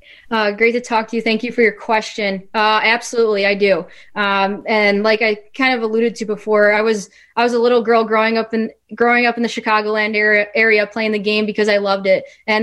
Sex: female